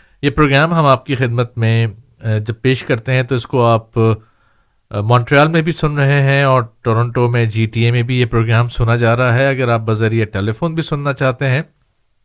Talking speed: 210 wpm